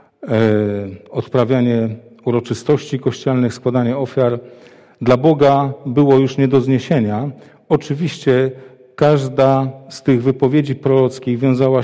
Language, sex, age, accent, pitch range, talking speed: Polish, male, 40-59, native, 120-140 Hz, 95 wpm